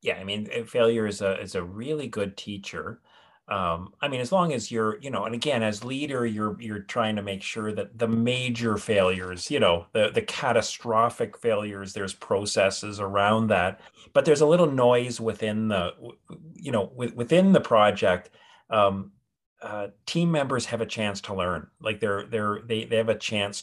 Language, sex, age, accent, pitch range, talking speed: English, male, 40-59, American, 100-125 Hz, 190 wpm